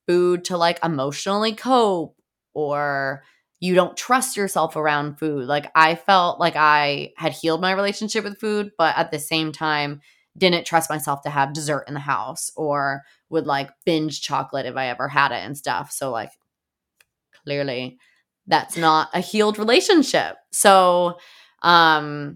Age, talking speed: 20-39, 160 wpm